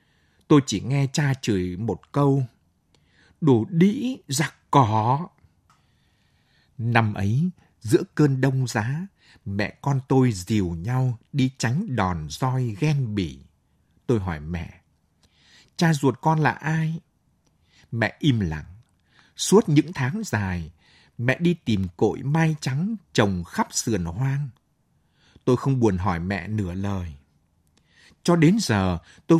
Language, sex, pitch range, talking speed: Vietnamese, male, 95-150 Hz, 130 wpm